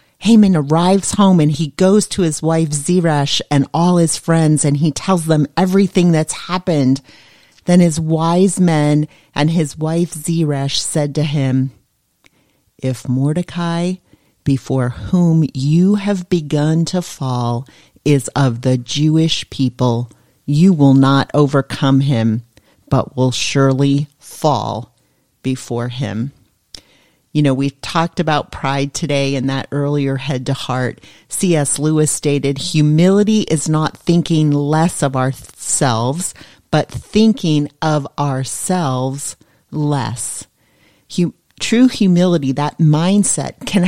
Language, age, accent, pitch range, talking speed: English, 40-59, American, 135-175 Hz, 125 wpm